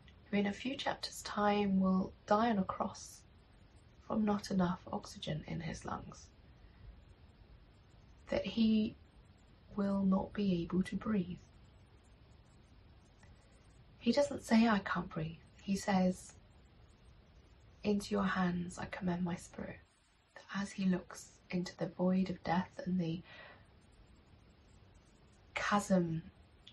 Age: 20-39